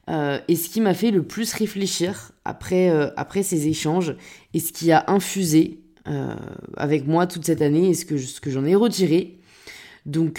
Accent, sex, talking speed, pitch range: French, female, 200 wpm, 155-200 Hz